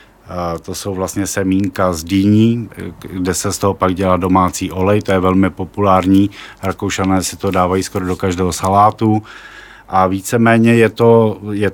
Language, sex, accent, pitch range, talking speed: Czech, male, native, 95-105 Hz, 165 wpm